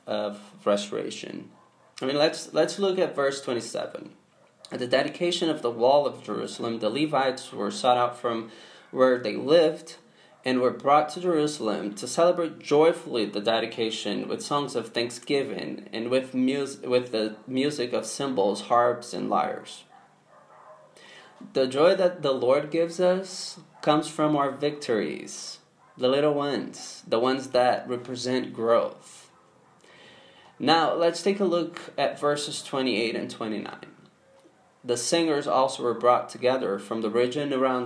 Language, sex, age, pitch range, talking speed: English, male, 20-39, 120-155 Hz, 145 wpm